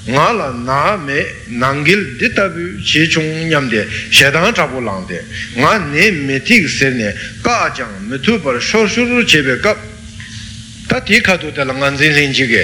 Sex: male